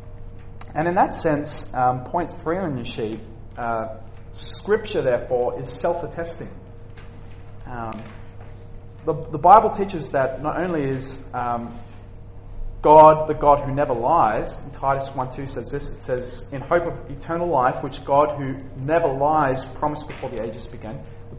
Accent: Australian